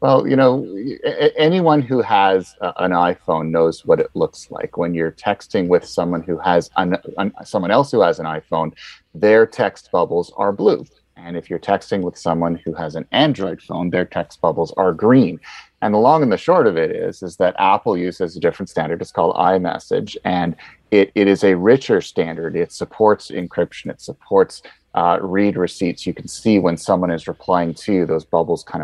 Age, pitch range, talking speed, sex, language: 30-49, 85-110 Hz, 200 wpm, male, English